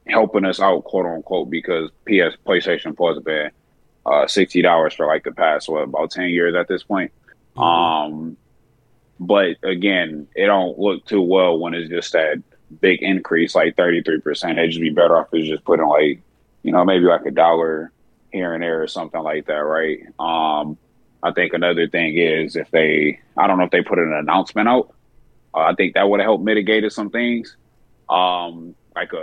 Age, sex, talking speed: 20-39, male, 190 wpm